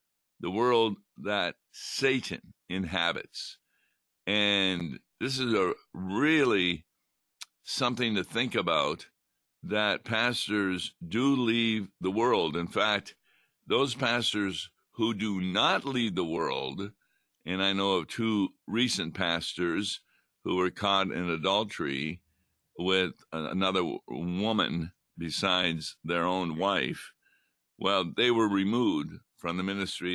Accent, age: American, 60-79